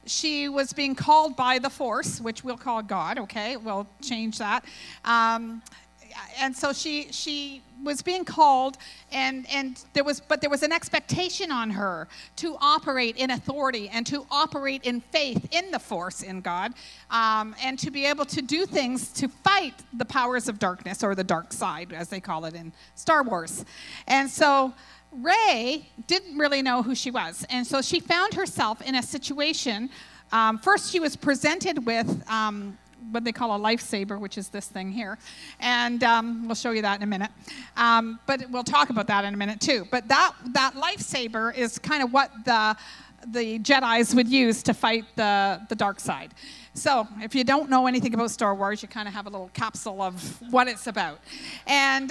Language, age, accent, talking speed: English, 50-69, American, 190 wpm